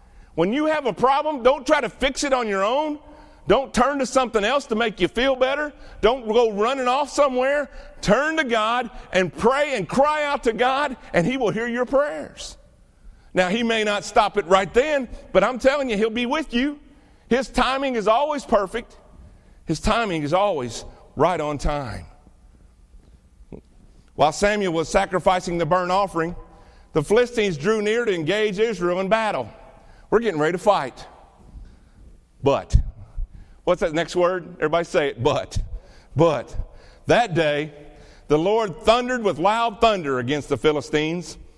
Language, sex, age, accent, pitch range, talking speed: English, male, 50-69, American, 170-260 Hz, 165 wpm